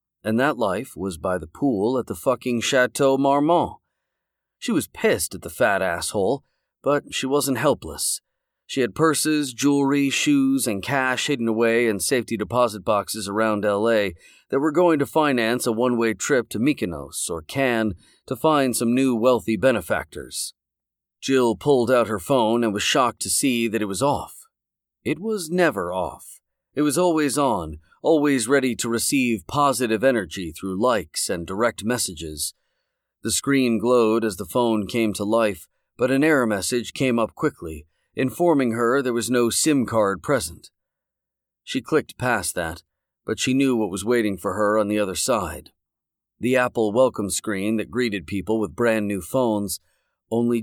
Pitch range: 110-140 Hz